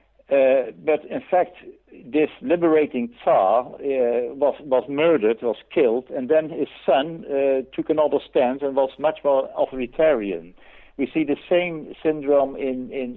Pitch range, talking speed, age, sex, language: 120-160 Hz, 150 wpm, 60-79, male, Swedish